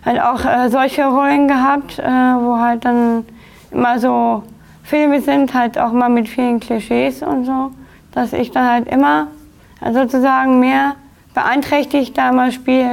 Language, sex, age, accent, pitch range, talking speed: German, female, 20-39, German, 235-280 Hz, 155 wpm